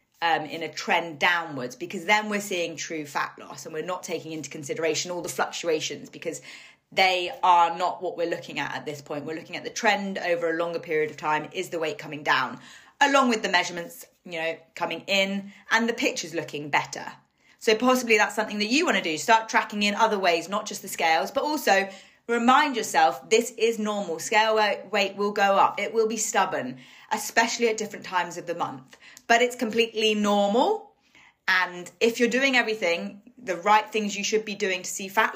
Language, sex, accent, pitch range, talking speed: English, female, British, 170-220 Hz, 205 wpm